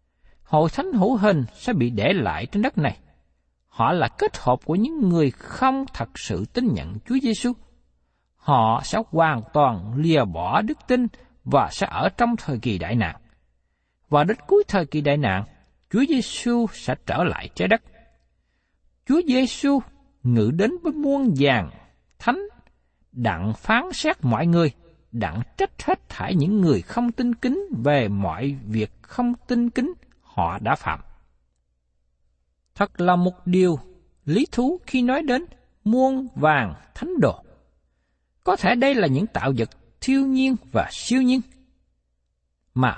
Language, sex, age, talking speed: Vietnamese, male, 60-79, 155 wpm